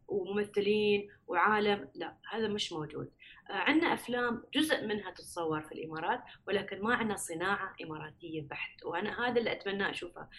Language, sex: Arabic, female